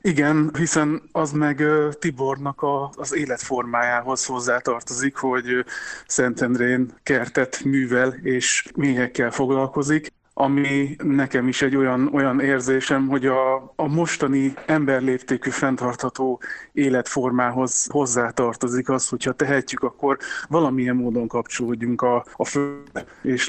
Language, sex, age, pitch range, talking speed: Hungarian, male, 30-49, 125-140 Hz, 105 wpm